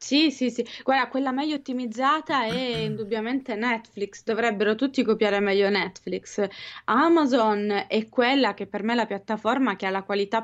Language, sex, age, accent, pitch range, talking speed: Italian, female, 20-39, native, 195-225 Hz, 160 wpm